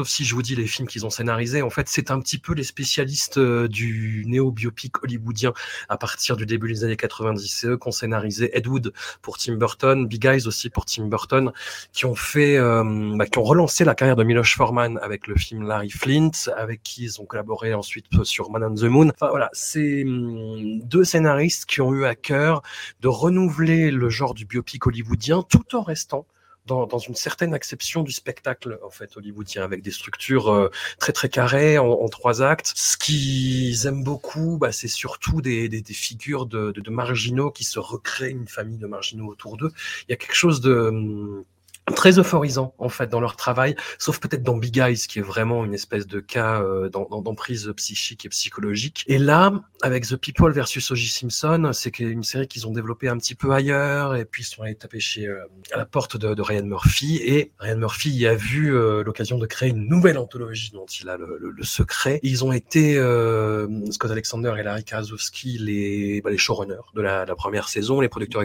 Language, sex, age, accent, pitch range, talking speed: French, male, 30-49, French, 110-140 Hz, 210 wpm